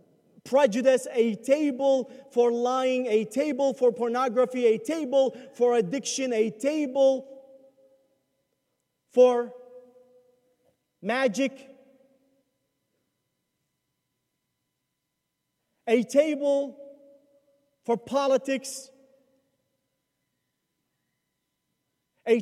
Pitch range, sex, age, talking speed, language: 240-280 Hz, male, 40-59, 60 wpm, English